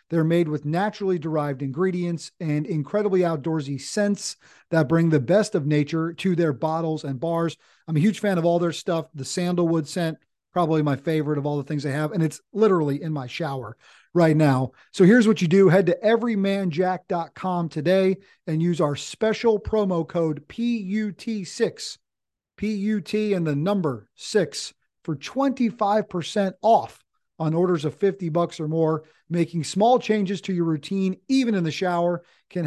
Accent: American